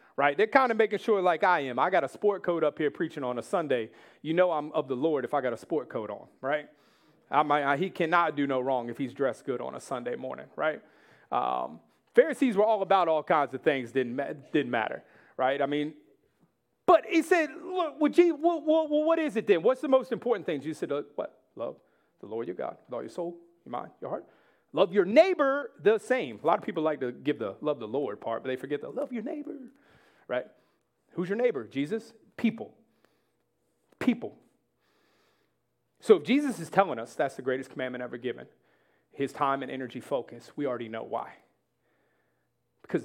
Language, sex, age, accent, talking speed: English, male, 40-59, American, 210 wpm